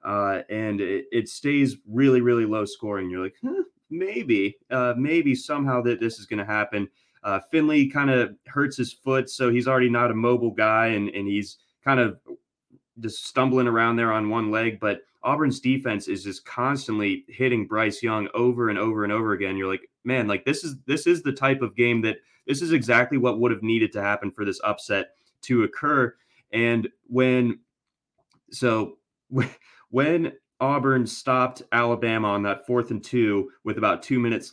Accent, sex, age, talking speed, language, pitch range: American, male, 20-39, 180 wpm, English, 110-130 Hz